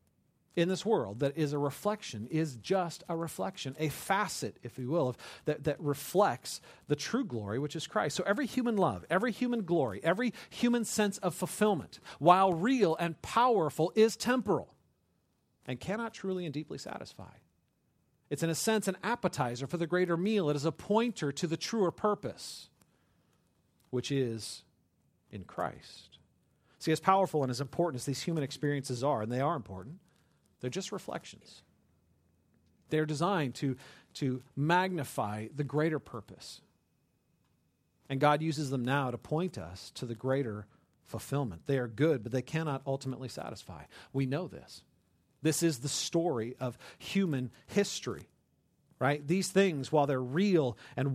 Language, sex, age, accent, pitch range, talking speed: English, male, 40-59, American, 130-185 Hz, 155 wpm